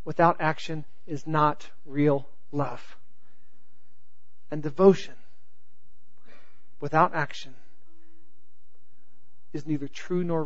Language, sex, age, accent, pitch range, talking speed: English, male, 40-59, American, 120-195 Hz, 80 wpm